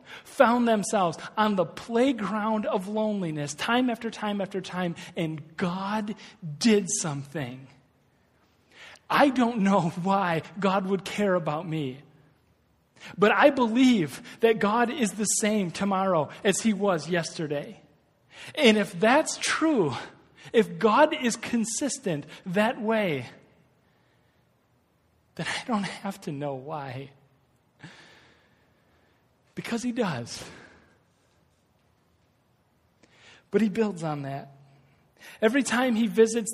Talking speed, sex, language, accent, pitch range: 110 wpm, male, English, American, 150-215 Hz